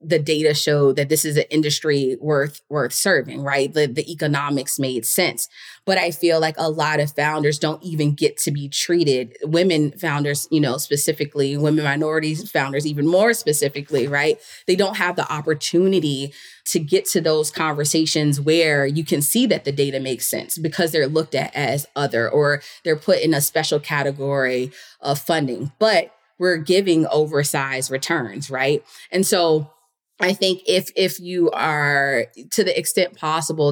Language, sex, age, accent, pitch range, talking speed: English, female, 20-39, American, 145-165 Hz, 170 wpm